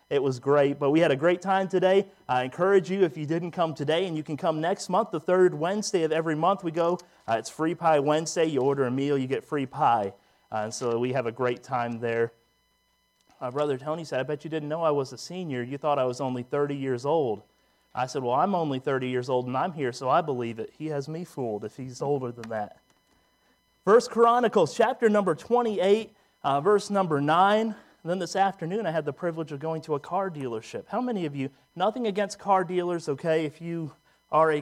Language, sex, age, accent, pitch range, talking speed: English, male, 30-49, American, 130-170 Hz, 230 wpm